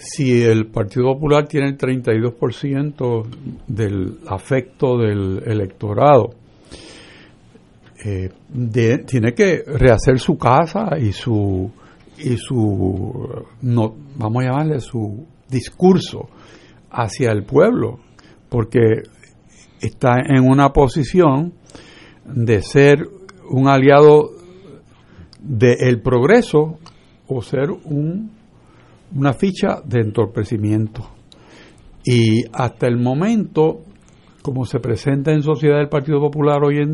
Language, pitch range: Spanish, 115-155 Hz